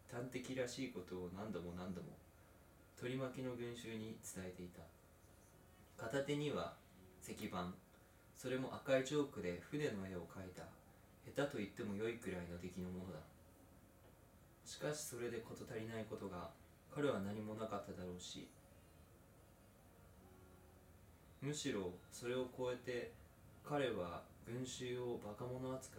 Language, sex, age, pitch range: Japanese, male, 20-39, 90-125 Hz